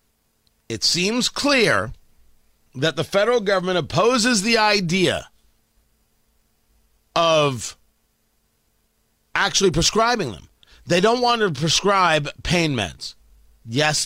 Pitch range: 140-220 Hz